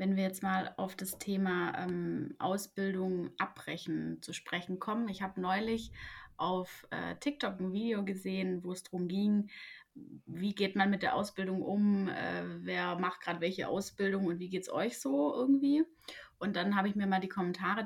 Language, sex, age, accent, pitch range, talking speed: German, female, 20-39, German, 180-215 Hz, 180 wpm